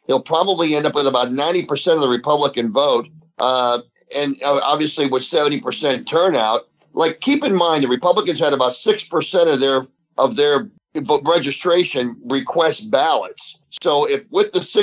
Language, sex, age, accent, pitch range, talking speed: English, male, 50-69, American, 140-210 Hz, 155 wpm